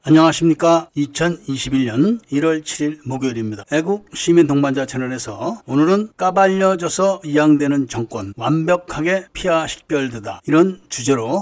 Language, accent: Korean, native